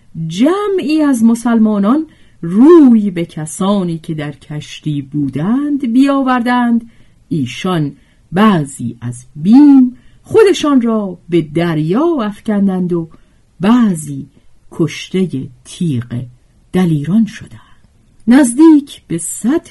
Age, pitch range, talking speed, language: 50-69, 150-245 Hz, 90 wpm, Persian